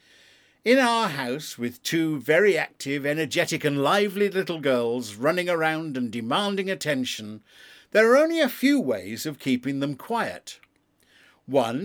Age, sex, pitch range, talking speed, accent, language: 50-69, male, 125-180 Hz, 140 wpm, British, English